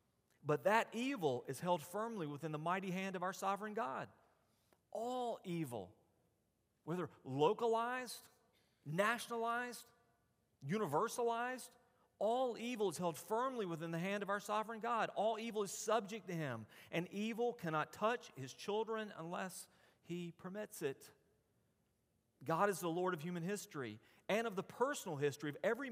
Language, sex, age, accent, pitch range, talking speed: English, male, 40-59, American, 155-215 Hz, 145 wpm